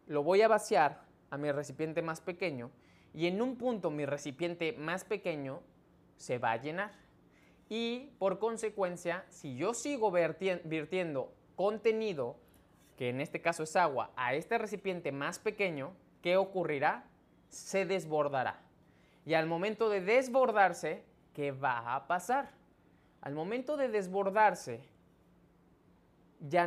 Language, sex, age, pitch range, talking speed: Spanish, male, 20-39, 150-215 Hz, 130 wpm